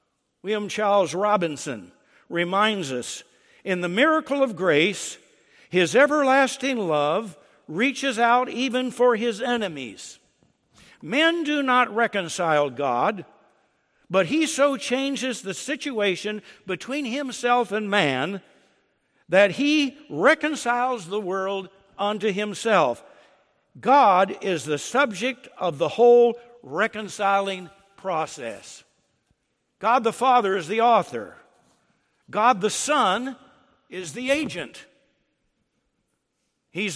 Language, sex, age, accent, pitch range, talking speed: English, male, 60-79, American, 195-255 Hz, 100 wpm